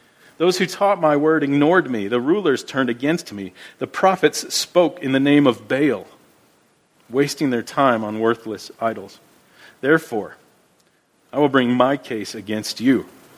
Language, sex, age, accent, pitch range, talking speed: English, male, 40-59, American, 125-170 Hz, 150 wpm